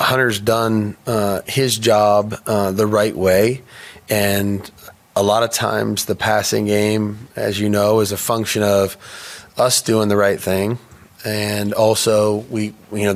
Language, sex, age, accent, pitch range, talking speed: English, male, 20-39, American, 100-110 Hz, 155 wpm